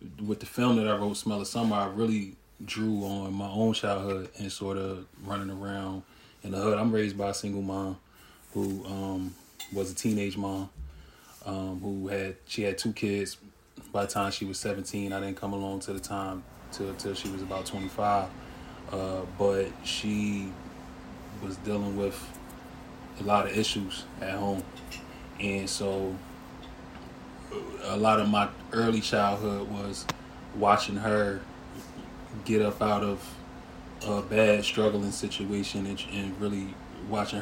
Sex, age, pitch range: male, 20-39, 95-105 Hz